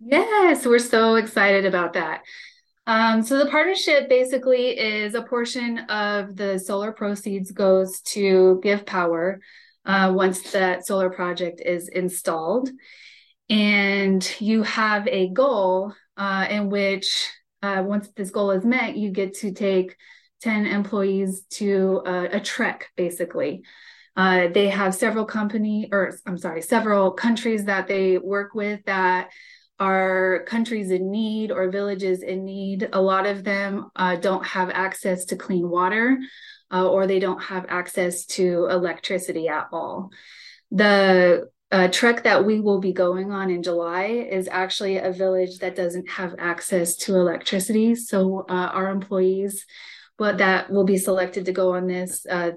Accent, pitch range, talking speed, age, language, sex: American, 185-215 Hz, 150 wpm, 20-39, English, female